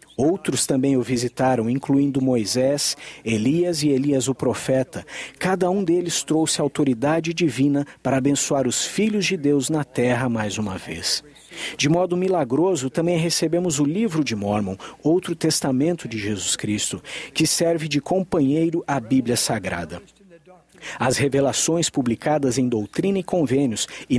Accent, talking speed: Brazilian, 140 wpm